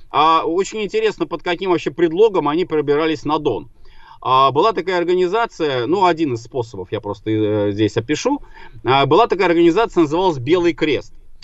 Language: Russian